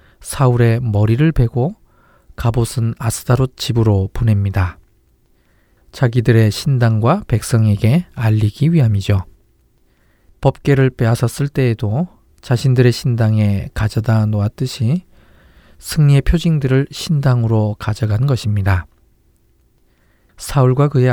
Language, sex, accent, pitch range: Korean, male, native, 105-130 Hz